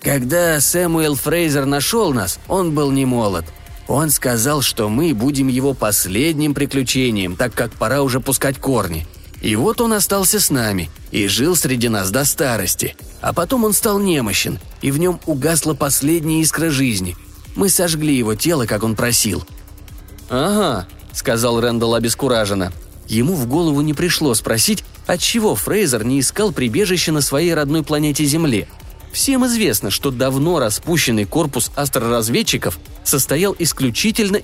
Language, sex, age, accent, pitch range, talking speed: Russian, male, 30-49, native, 110-155 Hz, 145 wpm